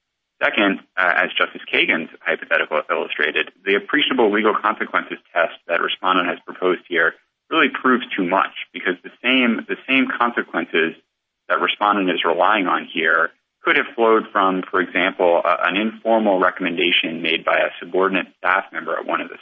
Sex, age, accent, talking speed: male, 30-49, American, 165 wpm